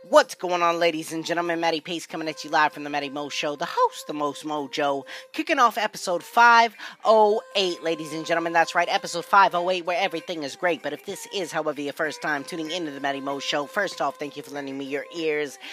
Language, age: English, 20-39